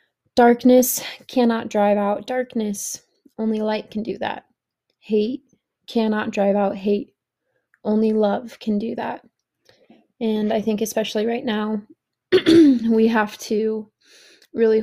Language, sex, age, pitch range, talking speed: English, female, 20-39, 215-240 Hz, 120 wpm